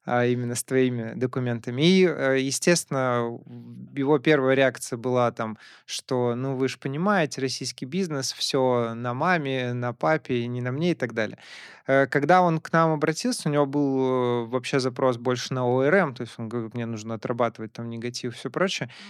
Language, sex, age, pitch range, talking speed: Russian, male, 20-39, 125-145 Hz, 175 wpm